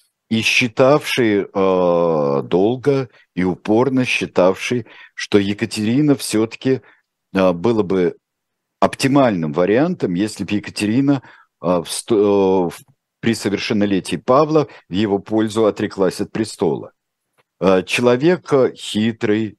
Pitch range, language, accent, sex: 90-115 Hz, Russian, native, male